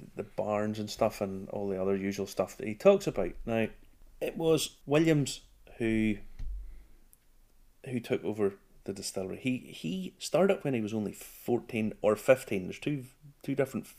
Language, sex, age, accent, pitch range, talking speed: English, male, 30-49, British, 105-130 Hz, 165 wpm